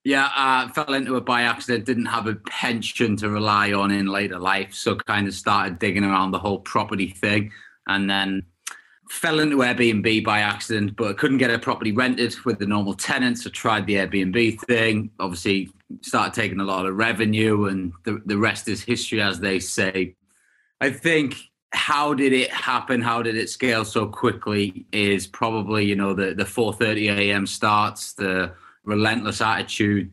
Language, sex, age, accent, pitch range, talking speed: English, male, 20-39, British, 100-120 Hz, 180 wpm